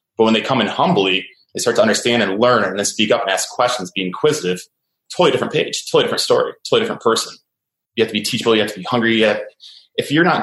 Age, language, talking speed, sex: 20-39, English, 265 wpm, male